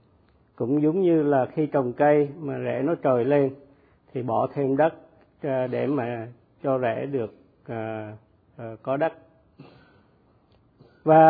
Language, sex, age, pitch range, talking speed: Vietnamese, male, 50-69, 125-155 Hz, 135 wpm